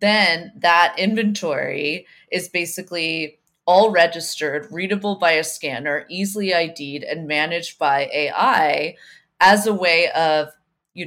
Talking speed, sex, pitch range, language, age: 120 wpm, female, 155-190 Hz, English, 20-39